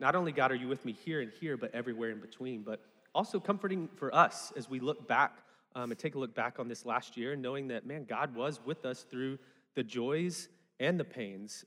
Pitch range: 125-165 Hz